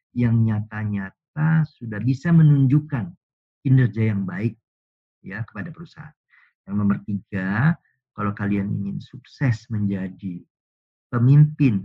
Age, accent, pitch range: 50-69, native, 100-150 Hz